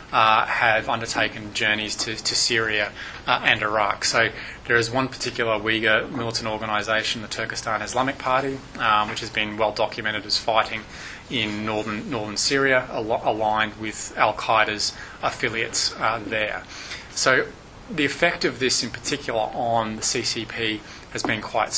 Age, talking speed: 20-39, 145 wpm